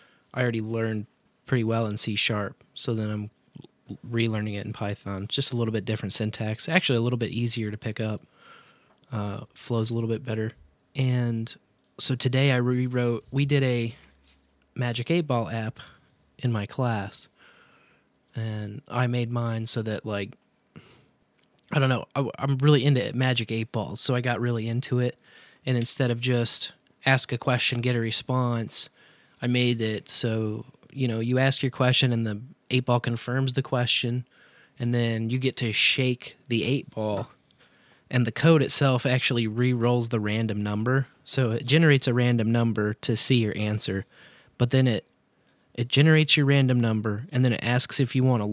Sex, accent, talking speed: male, American, 175 wpm